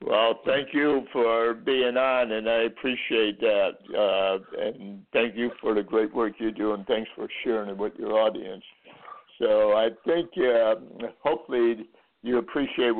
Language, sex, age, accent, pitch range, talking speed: English, male, 60-79, American, 110-125 Hz, 155 wpm